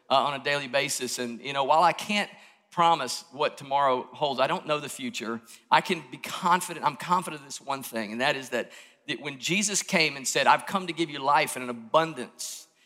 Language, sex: English, male